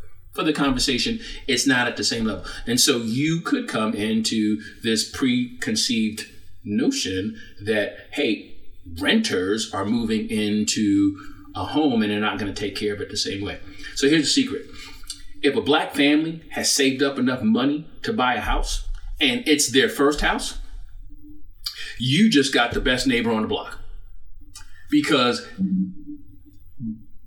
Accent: American